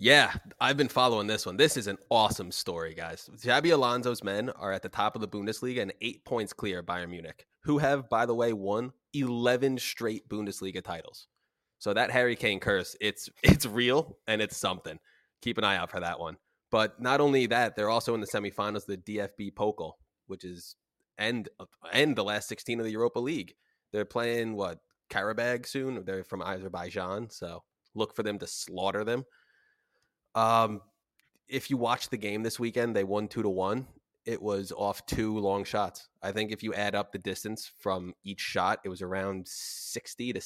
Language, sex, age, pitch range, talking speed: English, male, 20-39, 95-115 Hz, 195 wpm